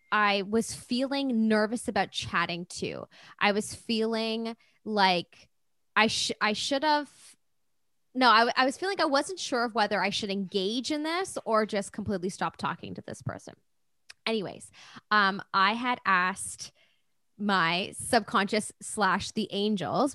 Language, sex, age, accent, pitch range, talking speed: English, female, 20-39, American, 195-245 Hz, 145 wpm